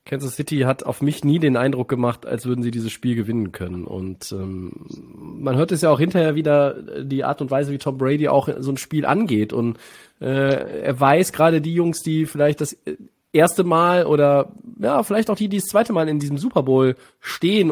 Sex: male